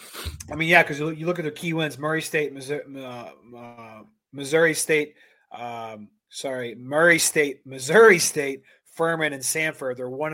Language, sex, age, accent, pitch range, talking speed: English, male, 20-39, American, 130-155 Hz, 155 wpm